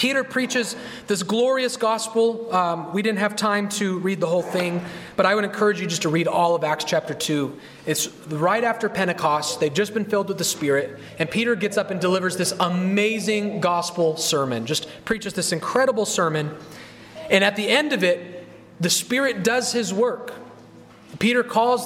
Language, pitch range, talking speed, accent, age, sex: English, 180-235 Hz, 185 wpm, American, 30-49, male